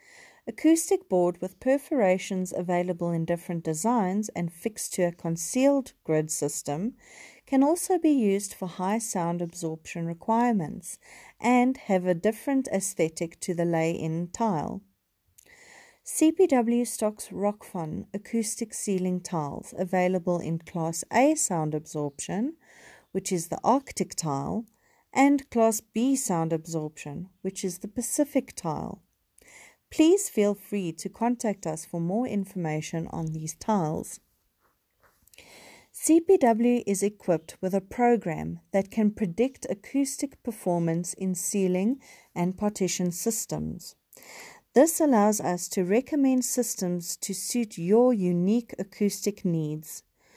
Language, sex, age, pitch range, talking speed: English, female, 40-59, 175-240 Hz, 120 wpm